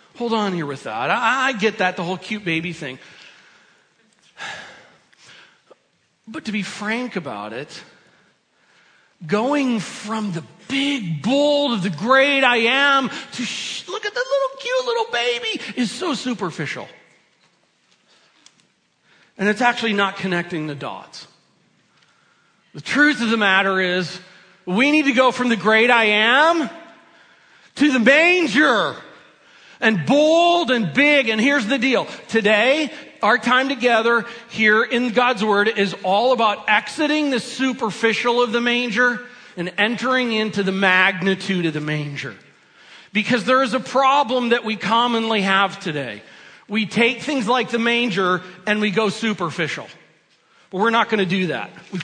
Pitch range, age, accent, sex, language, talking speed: 195-260 Hz, 40-59, American, male, English, 150 wpm